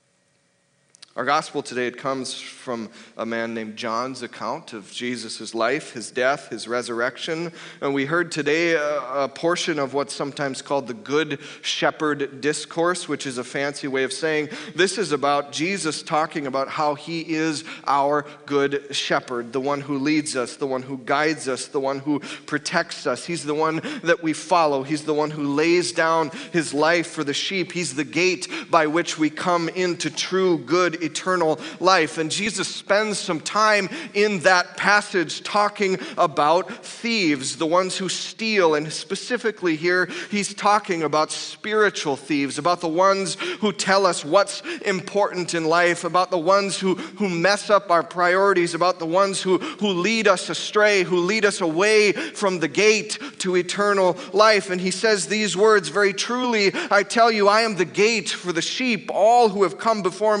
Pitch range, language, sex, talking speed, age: 150-195 Hz, English, male, 175 wpm, 30-49